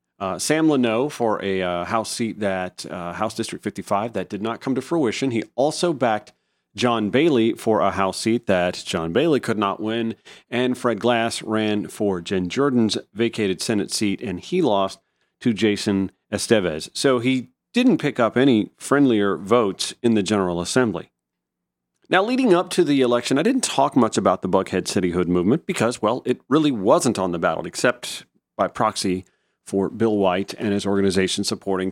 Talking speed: 180 wpm